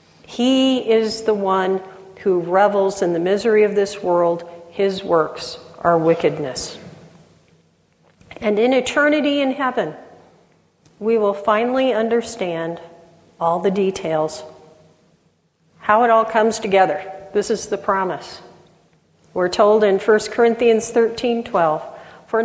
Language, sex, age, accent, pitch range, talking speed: English, female, 50-69, American, 180-230 Hz, 120 wpm